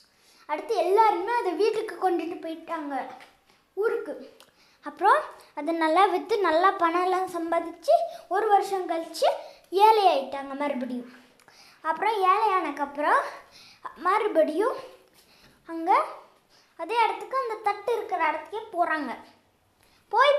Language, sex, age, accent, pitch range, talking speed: Tamil, female, 20-39, native, 330-435 Hz, 95 wpm